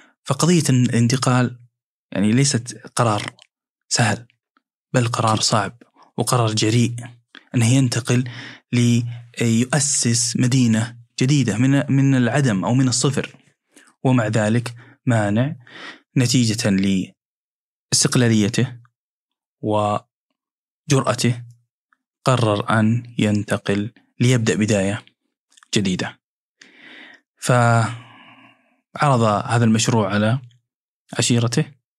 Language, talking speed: Arabic, 75 wpm